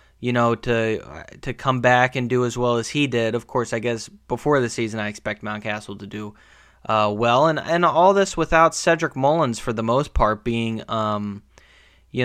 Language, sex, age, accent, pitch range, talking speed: English, male, 20-39, American, 115-135 Hz, 200 wpm